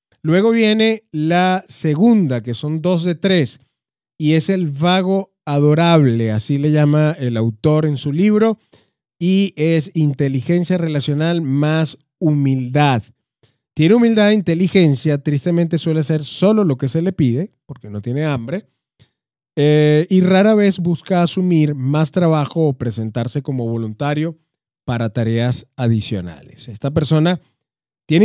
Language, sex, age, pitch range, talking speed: Spanish, male, 30-49, 140-180 Hz, 135 wpm